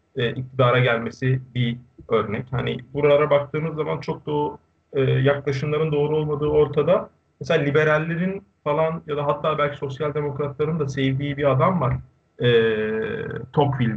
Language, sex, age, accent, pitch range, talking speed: Turkish, male, 50-69, native, 125-155 Hz, 140 wpm